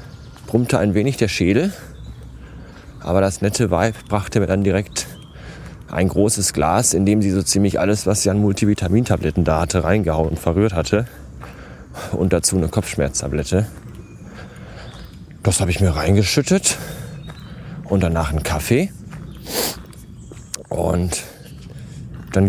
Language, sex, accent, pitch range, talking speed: German, male, German, 90-115 Hz, 125 wpm